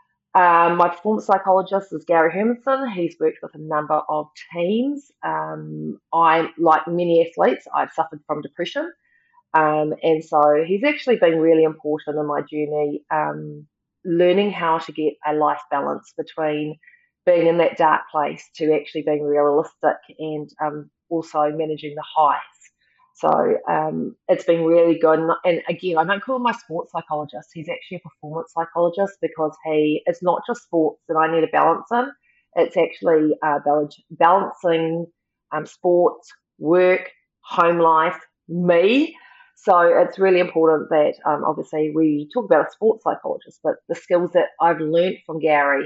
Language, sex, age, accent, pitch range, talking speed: English, female, 30-49, Australian, 150-180 Hz, 160 wpm